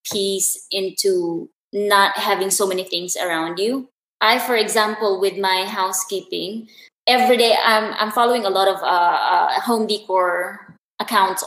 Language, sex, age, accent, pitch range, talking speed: Filipino, female, 20-39, native, 195-245 Hz, 145 wpm